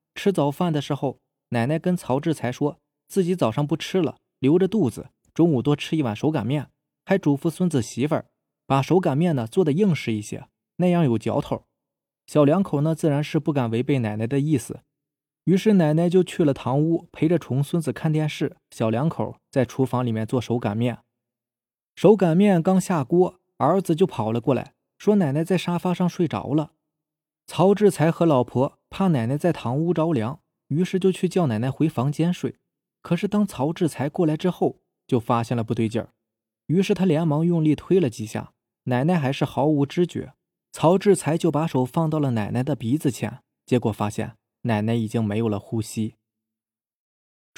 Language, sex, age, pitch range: Chinese, male, 20-39, 120-170 Hz